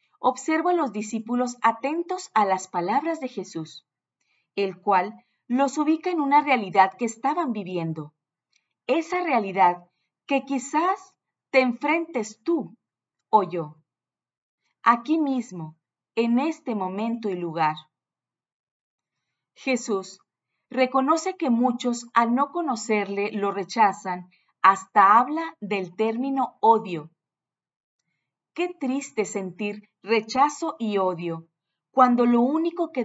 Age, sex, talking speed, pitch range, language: 40-59, female, 110 wpm, 185-270 Hz, Spanish